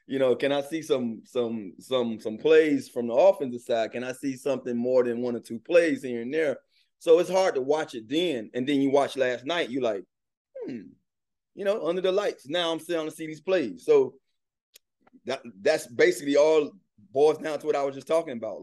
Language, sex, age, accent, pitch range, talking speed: English, male, 30-49, American, 115-160 Hz, 225 wpm